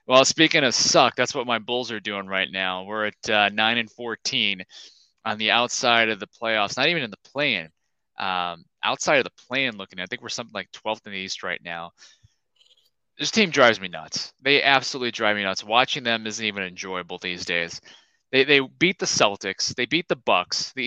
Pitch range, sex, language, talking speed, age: 105-130 Hz, male, English, 210 wpm, 20-39